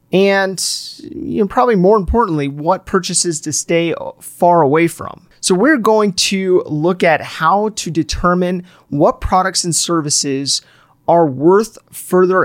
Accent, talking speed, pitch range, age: American, 130 wpm, 150-185 Hz, 30-49